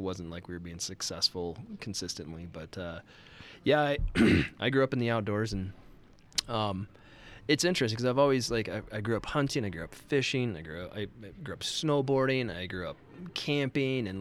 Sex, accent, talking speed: male, American, 205 wpm